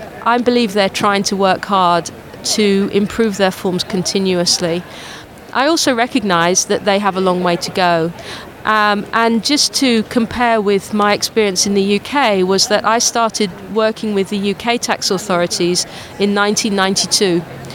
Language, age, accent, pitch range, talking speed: English, 40-59, British, 185-230 Hz, 155 wpm